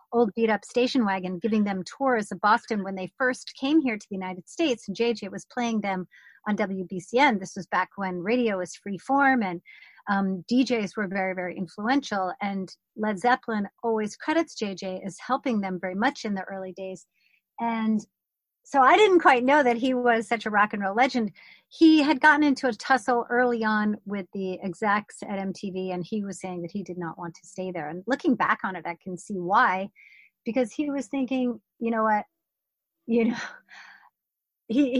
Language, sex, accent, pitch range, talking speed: English, female, American, 190-250 Hz, 195 wpm